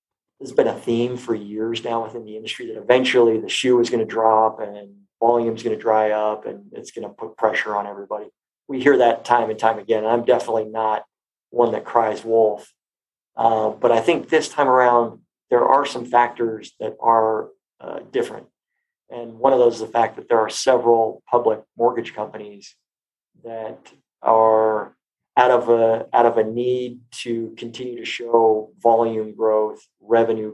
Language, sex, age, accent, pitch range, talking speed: English, male, 40-59, American, 110-120 Hz, 180 wpm